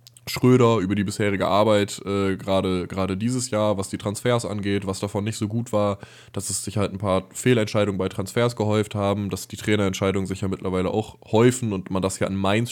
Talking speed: 210 wpm